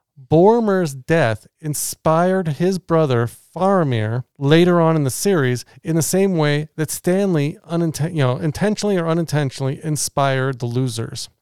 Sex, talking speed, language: male, 120 wpm, English